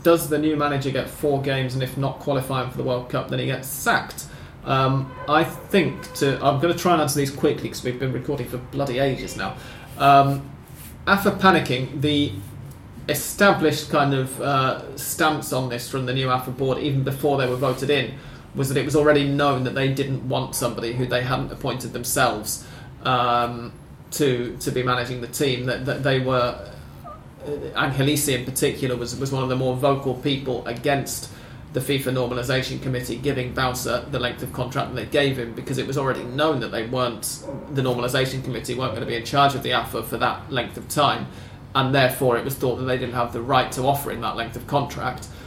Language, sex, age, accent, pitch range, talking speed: English, male, 30-49, British, 125-140 Hz, 205 wpm